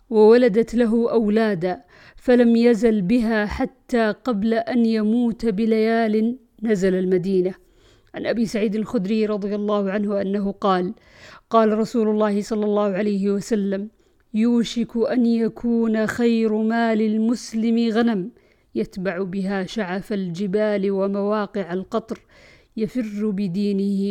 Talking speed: 110 wpm